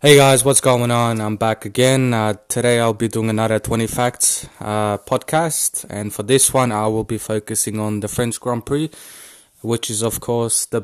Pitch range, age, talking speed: 110-125 Hz, 20-39, 200 wpm